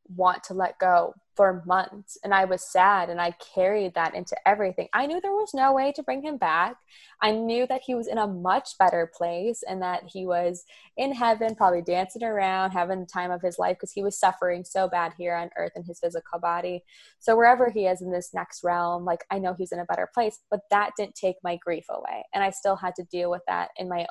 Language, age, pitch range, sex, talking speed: English, 20-39, 180-225 Hz, female, 240 wpm